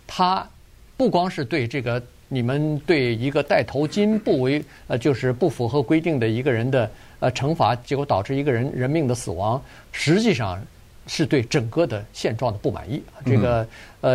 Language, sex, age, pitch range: Chinese, male, 50-69, 115-150 Hz